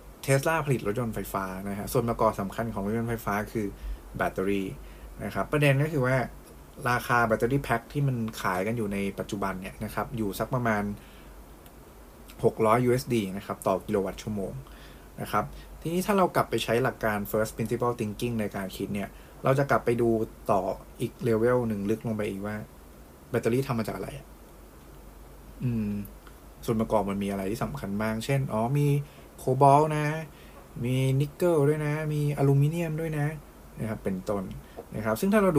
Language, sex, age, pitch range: English, male, 20-39, 100-130 Hz